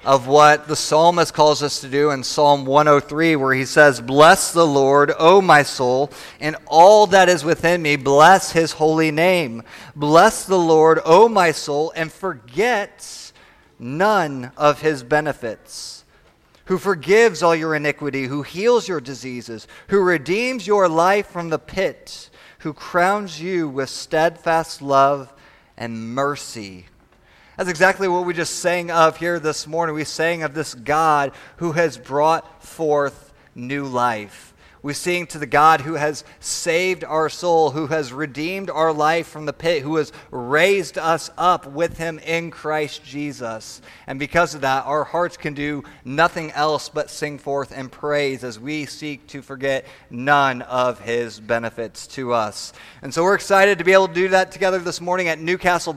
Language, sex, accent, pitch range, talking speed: English, male, American, 140-170 Hz, 165 wpm